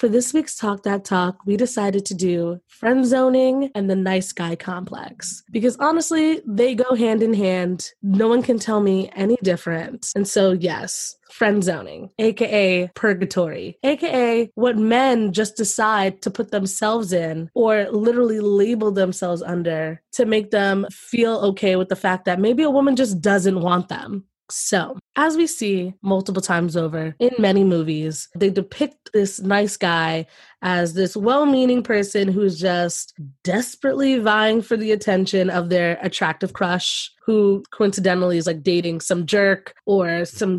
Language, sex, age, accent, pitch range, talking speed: English, female, 20-39, American, 180-225 Hz, 160 wpm